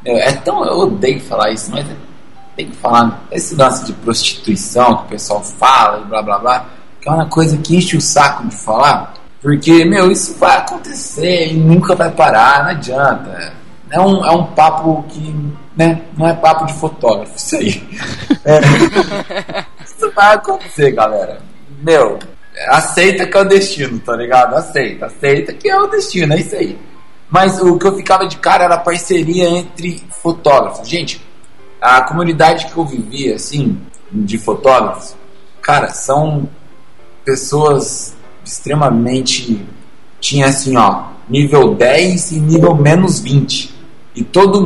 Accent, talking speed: Brazilian, 155 wpm